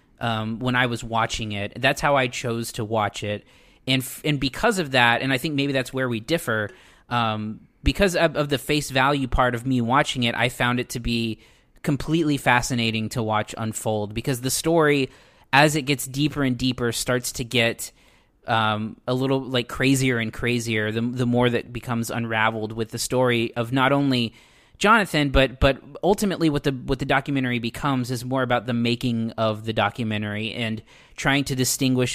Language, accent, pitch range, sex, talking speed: English, American, 115-135 Hz, male, 190 wpm